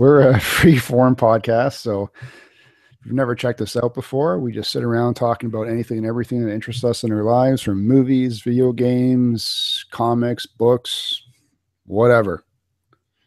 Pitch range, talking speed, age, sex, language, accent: 110-130 Hz, 155 wpm, 40-59, male, English, American